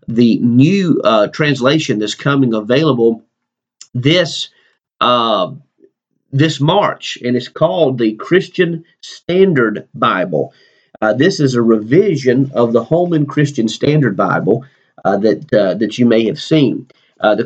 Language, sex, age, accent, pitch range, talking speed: English, male, 40-59, American, 115-155 Hz, 135 wpm